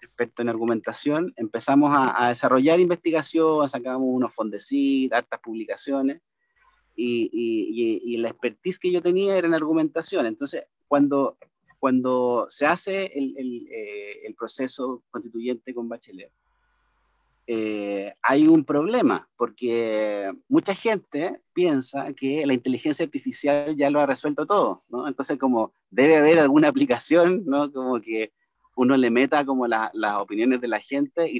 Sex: male